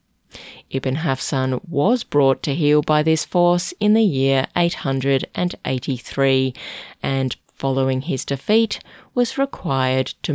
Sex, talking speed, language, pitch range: female, 115 wpm, English, 130-175 Hz